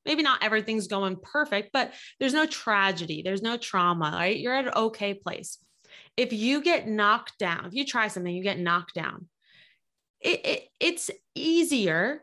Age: 20-39